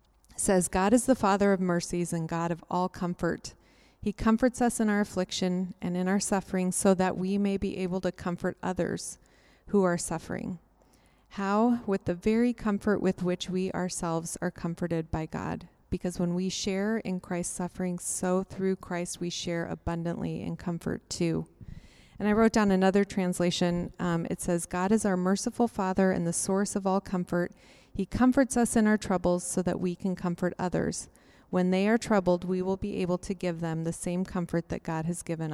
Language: English